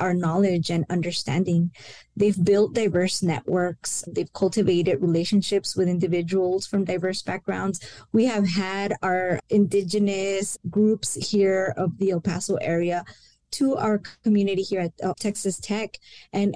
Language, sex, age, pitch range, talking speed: English, female, 20-39, 175-200 Hz, 130 wpm